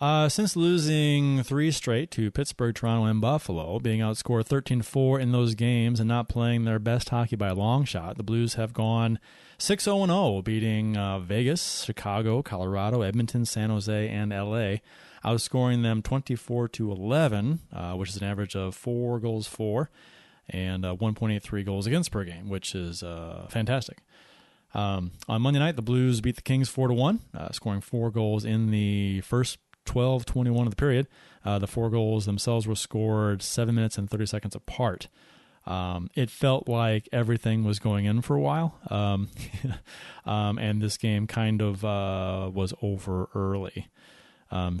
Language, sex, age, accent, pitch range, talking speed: English, male, 30-49, American, 100-120 Hz, 165 wpm